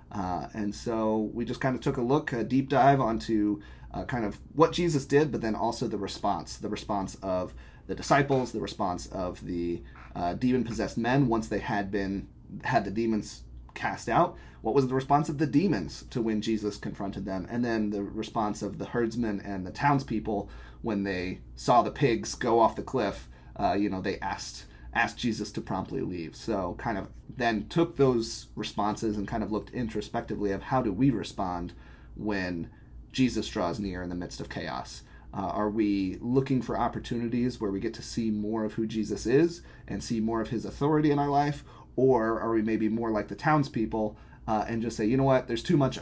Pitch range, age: 100-120 Hz, 30-49